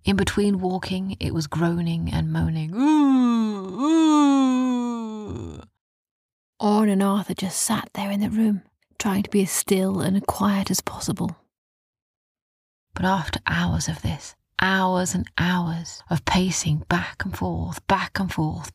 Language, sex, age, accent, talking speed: English, female, 30-49, British, 135 wpm